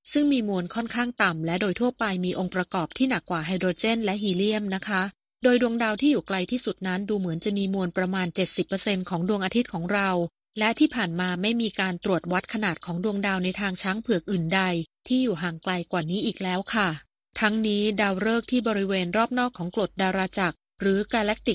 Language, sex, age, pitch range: Thai, female, 30-49, 185-225 Hz